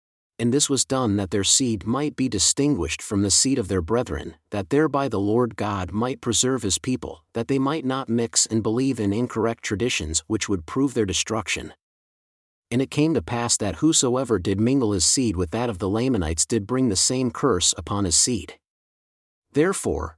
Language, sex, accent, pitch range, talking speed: English, male, American, 100-130 Hz, 195 wpm